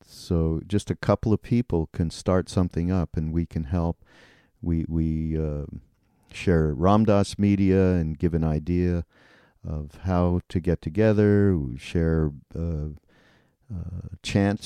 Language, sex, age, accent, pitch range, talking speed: English, male, 50-69, American, 80-100 Hz, 140 wpm